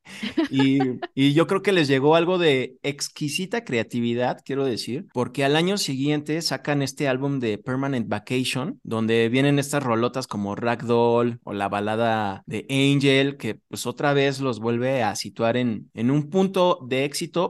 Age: 30-49